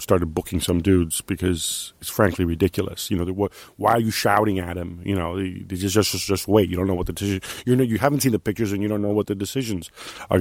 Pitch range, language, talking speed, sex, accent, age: 90-105 Hz, English, 270 wpm, male, American, 40-59